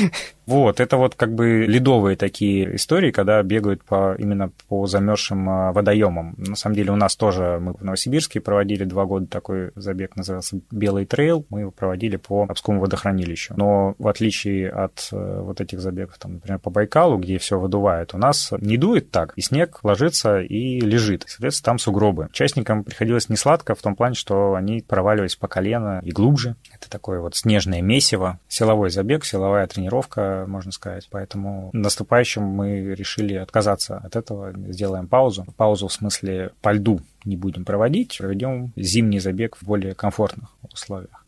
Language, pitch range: Russian, 95-115 Hz